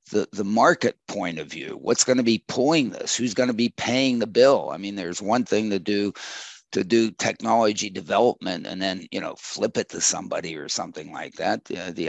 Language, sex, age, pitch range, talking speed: English, male, 50-69, 100-120 Hz, 215 wpm